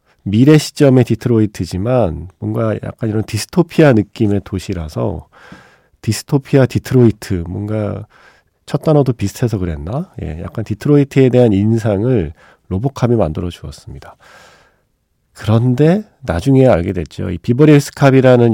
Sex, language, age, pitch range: male, Korean, 40-59, 95-135 Hz